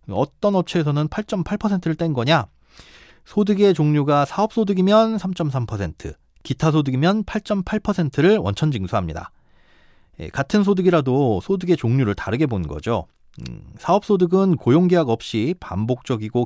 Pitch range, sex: 110-170 Hz, male